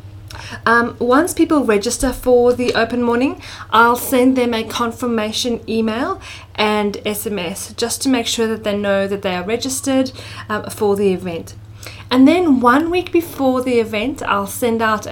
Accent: Australian